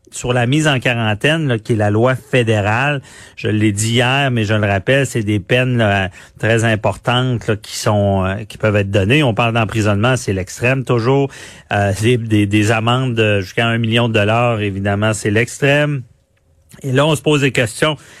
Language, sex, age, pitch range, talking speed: French, male, 40-59, 110-135 Hz, 190 wpm